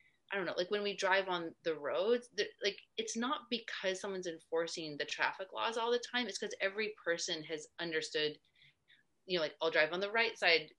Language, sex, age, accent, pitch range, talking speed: English, female, 30-49, American, 155-190 Hz, 205 wpm